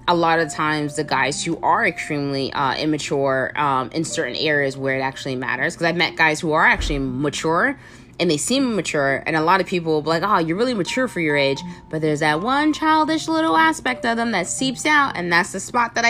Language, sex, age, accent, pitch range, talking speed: English, female, 20-39, American, 135-175 Hz, 240 wpm